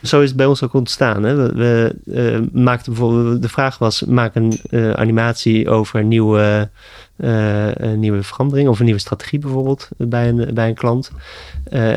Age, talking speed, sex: 30-49, 150 wpm, male